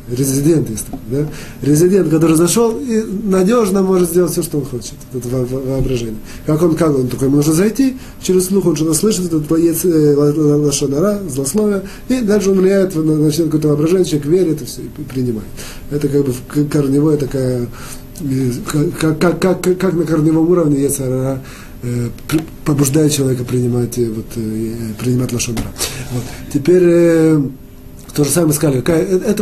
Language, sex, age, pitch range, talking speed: Russian, male, 30-49, 140-180 Hz, 165 wpm